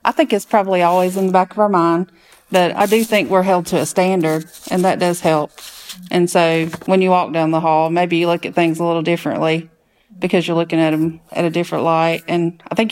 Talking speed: 240 wpm